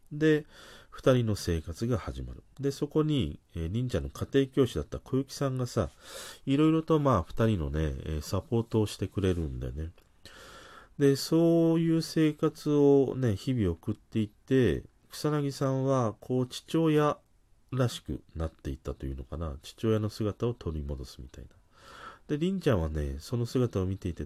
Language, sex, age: Japanese, male, 40-59